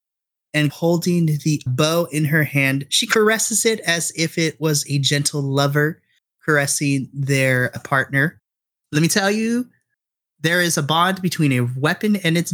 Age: 30-49